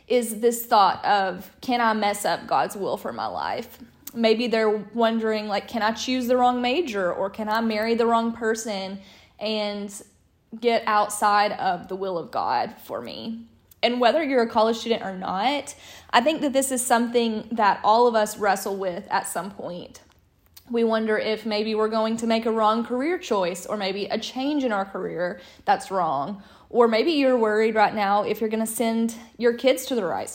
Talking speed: 200 wpm